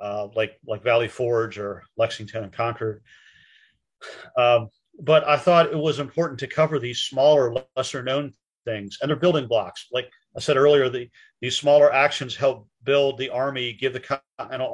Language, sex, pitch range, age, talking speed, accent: English, male, 125-150 Hz, 40-59, 165 wpm, American